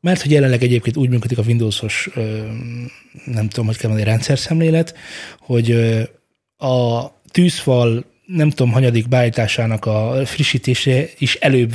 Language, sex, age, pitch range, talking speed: Hungarian, male, 20-39, 110-135 Hz, 130 wpm